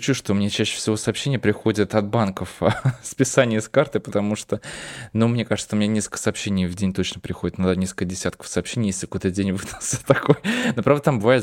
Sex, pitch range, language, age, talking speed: male, 105-130 Hz, Russian, 20-39, 200 wpm